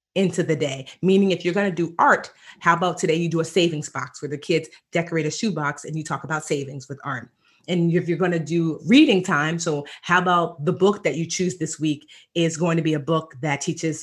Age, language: 30-49, English